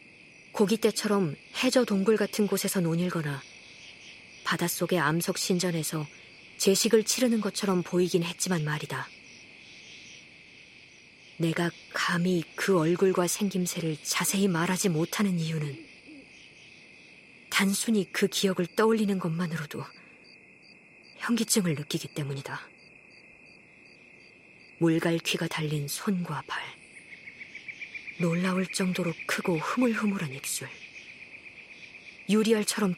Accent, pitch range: native, 165-210 Hz